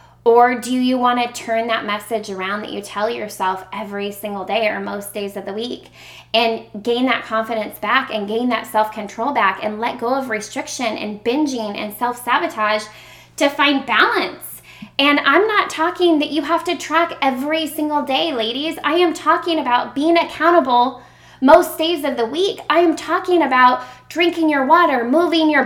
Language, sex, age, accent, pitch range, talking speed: English, female, 20-39, American, 235-315 Hz, 180 wpm